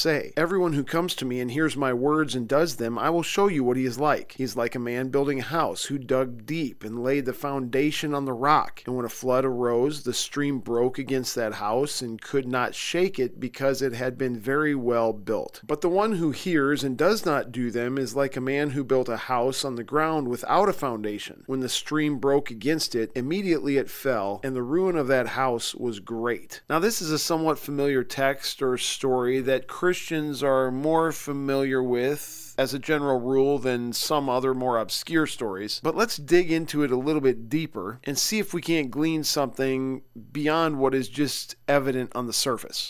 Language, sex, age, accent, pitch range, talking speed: English, male, 40-59, American, 130-155 Hz, 215 wpm